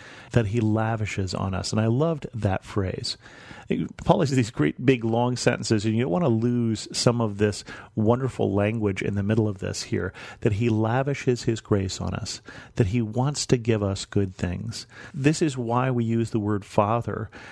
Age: 40-59